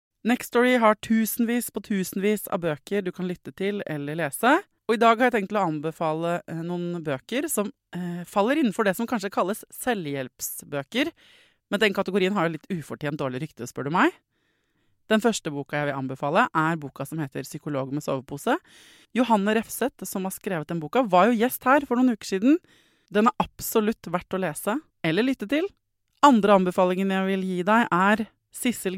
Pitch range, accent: 155-220 Hz, Swedish